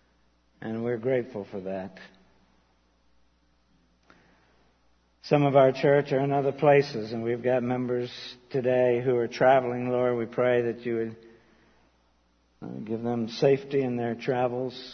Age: 60-79